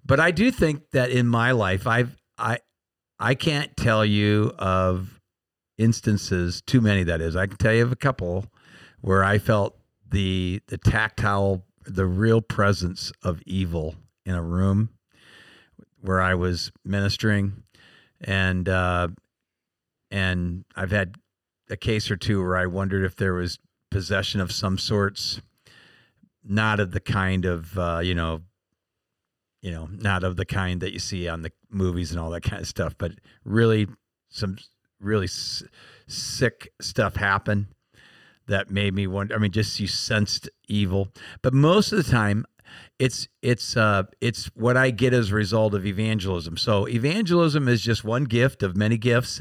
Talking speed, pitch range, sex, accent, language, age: 160 wpm, 95-115 Hz, male, American, English, 50-69